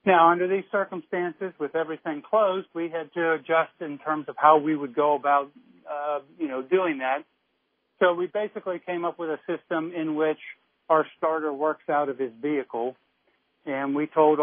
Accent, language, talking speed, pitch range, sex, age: American, English, 185 wpm, 150-175 Hz, male, 50-69